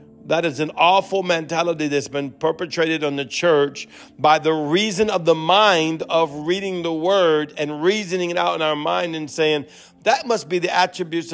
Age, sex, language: 50-69, male, English